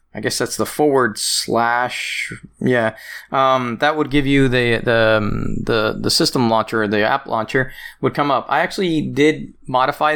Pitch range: 115-145 Hz